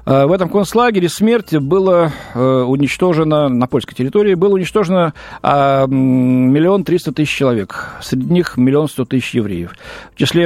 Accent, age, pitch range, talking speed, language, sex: native, 40-59, 125-175 Hz, 130 wpm, Russian, male